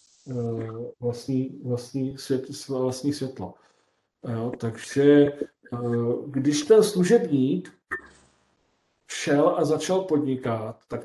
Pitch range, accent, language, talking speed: 130-155 Hz, native, Czech, 80 wpm